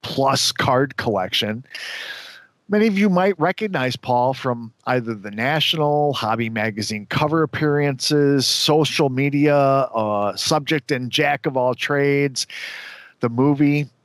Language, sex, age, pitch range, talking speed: English, male, 40-59, 120-160 Hz, 120 wpm